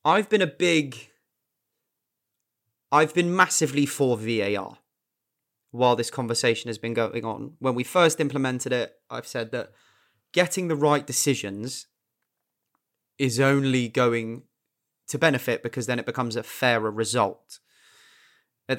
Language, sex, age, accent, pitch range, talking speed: English, male, 20-39, British, 115-145 Hz, 130 wpm